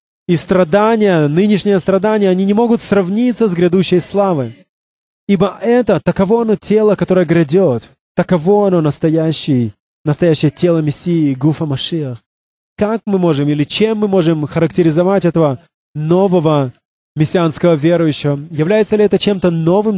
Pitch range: 160-200 Hz